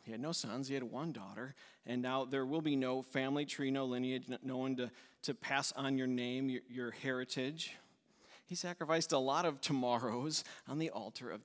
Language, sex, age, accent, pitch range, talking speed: English, male, 40-59, American, 130-160 Hz, 205 wpm